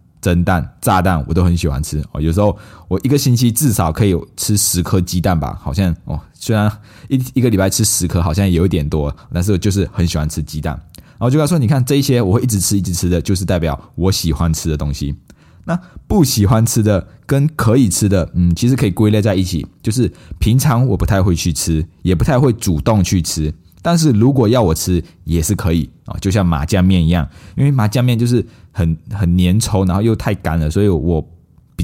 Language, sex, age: Chinese, male, 20-39